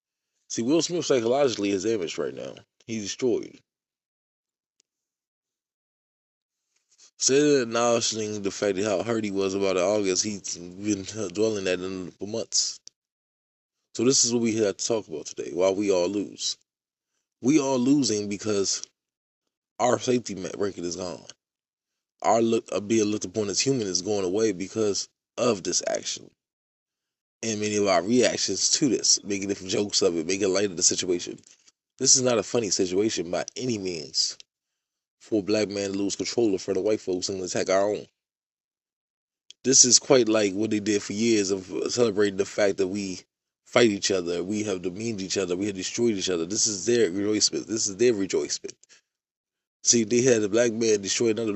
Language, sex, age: English, male, 20-39